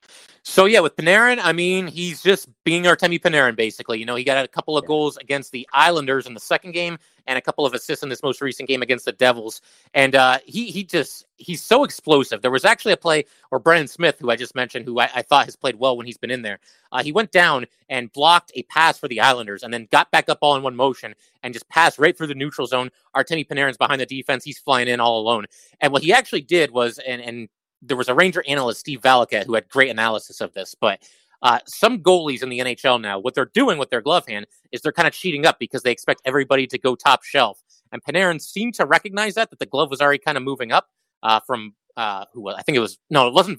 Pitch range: 125-165 Hz